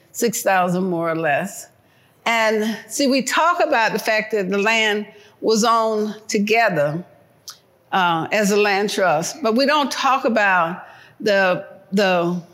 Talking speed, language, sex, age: 140 wpm, English, female, 60-79